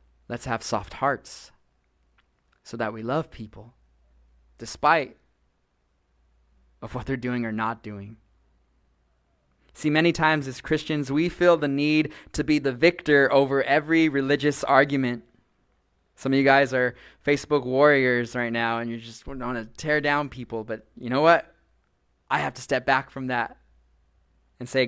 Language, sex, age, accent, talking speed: English, male, 20-39, American, 155 wpm